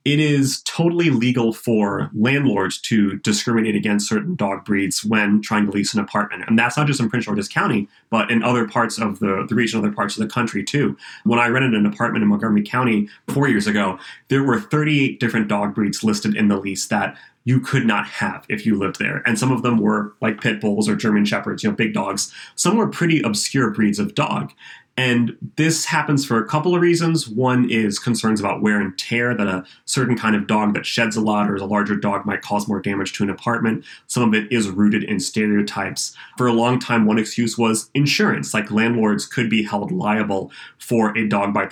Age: 30-49